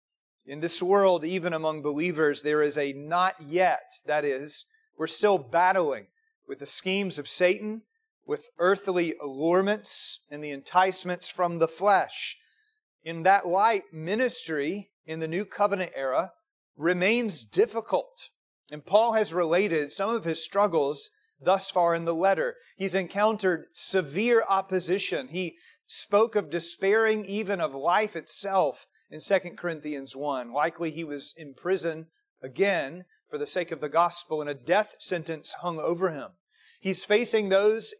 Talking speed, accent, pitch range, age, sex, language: 145 wpm, American, 160-205 Hz, 40-59, male, English